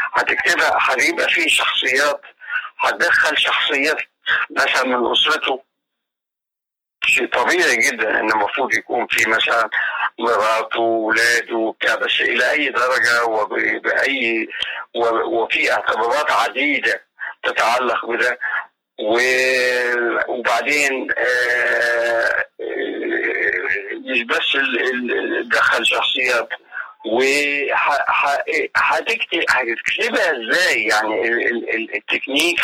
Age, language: 50-69, Arabic